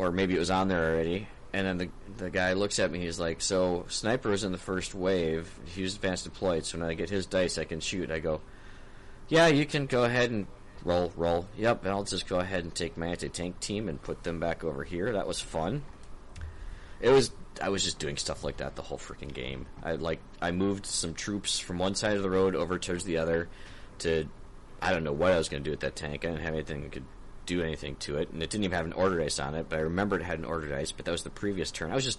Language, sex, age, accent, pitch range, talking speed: English, male, 20-39, American, 80-95 Hz, 270 wpm